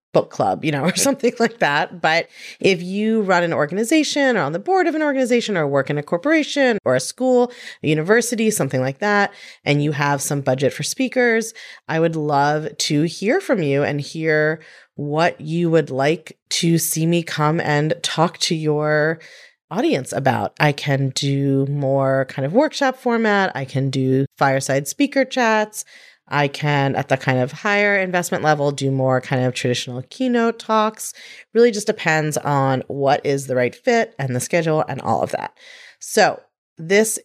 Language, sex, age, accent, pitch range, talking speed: English, female, 30-49, American, 145-220 Hz, 180 wpm